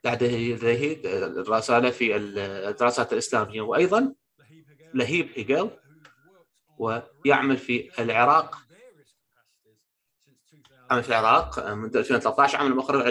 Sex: male